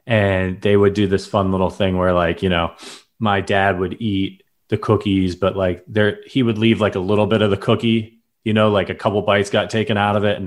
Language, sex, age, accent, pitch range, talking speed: English, male, 30-49, American, 100-120 Hz, 245 wpm